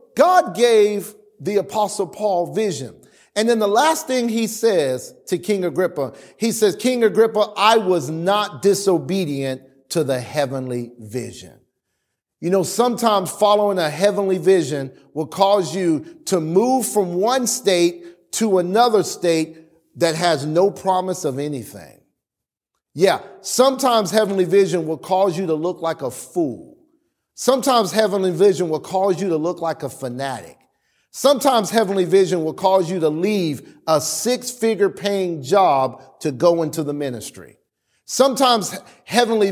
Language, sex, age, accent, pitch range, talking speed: English, male, 40-59, American, 160-220 Hz, 145 wpm